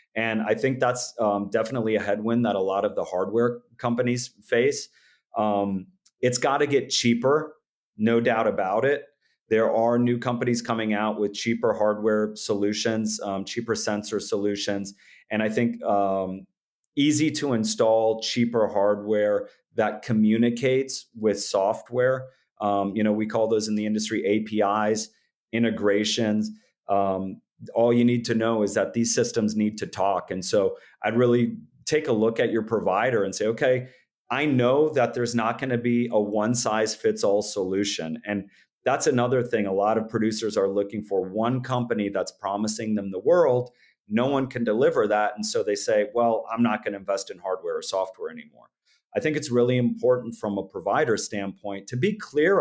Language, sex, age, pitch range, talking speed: English, male, 30-49, 105-125 Hz, 175 wpm